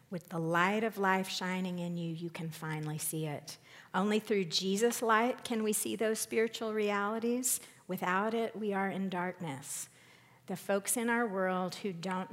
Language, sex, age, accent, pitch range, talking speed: English, female, 50-69, American, 170-200 Hz, 175 wpm